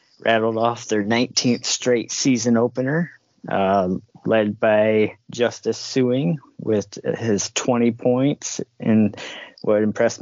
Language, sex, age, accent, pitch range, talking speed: English, male, 30-49, American, 105-125 Hz, 110 wpm